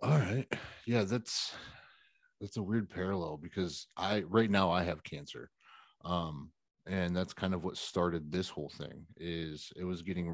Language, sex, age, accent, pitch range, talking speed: English, male, 30-49, American, 80-95 Hz, 170 wpm